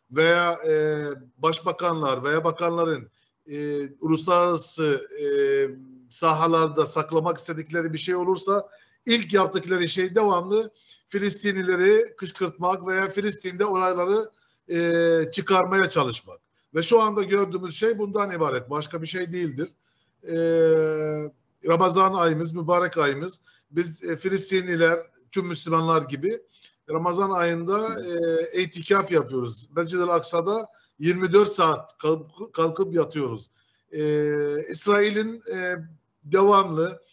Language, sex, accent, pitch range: Turkish, male, native, 160-195 Hz